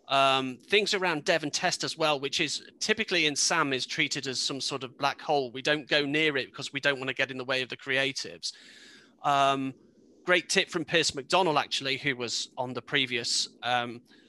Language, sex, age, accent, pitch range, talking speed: English, male, 30-49, British, 130-155 Hz, 215 wpm